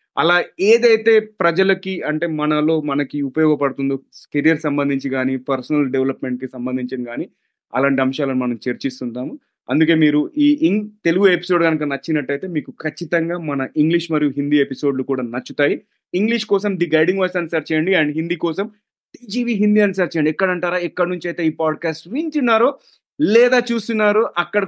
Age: 30-49